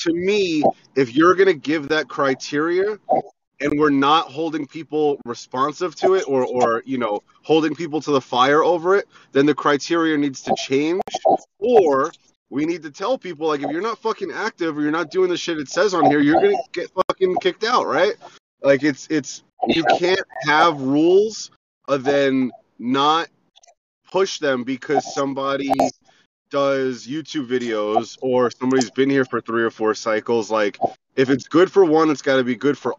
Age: 30-49